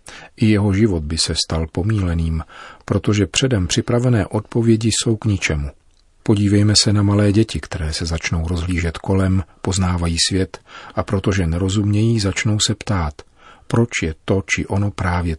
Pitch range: 85-110 Hz